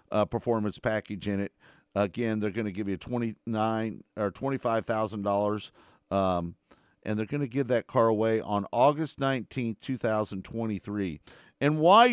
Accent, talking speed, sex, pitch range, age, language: American, 165 wpm, male, 110-140 Hz, 50-69, English